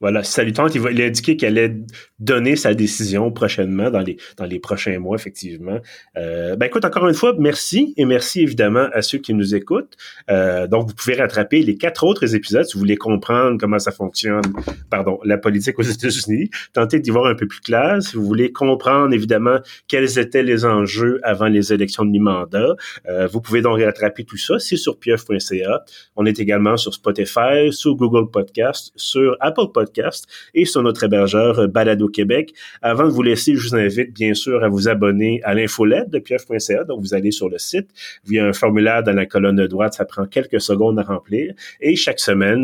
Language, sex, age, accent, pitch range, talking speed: French, male, 30-49, Canadian, 100-125 Hz, 200 wpm